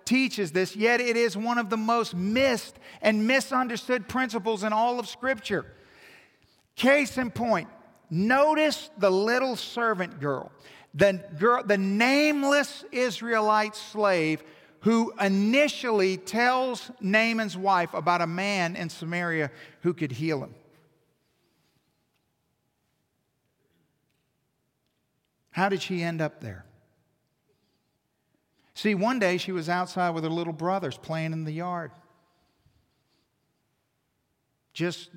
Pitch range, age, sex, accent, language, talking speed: 155-215 Hz, 50-69, male, American, English, 110 wpm